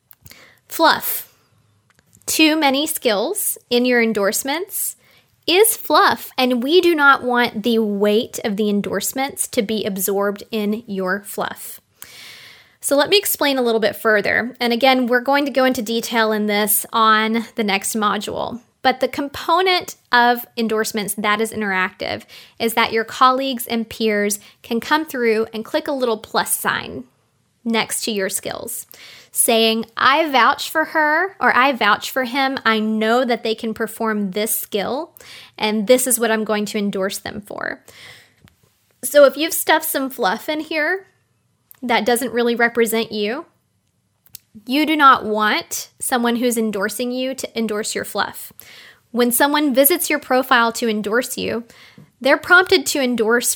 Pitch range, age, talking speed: 215-270 Hz, 20-39, 155 wpm